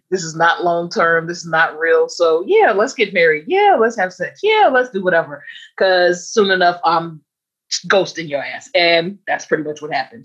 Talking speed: 200 wpm